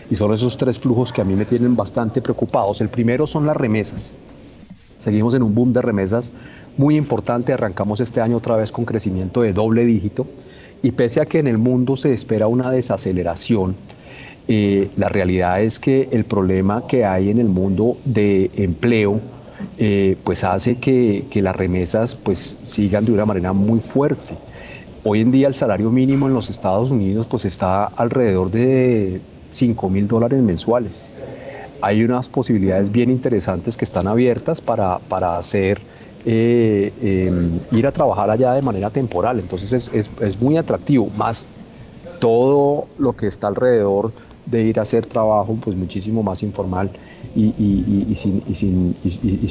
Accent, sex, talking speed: Colombian, male, 165 wpm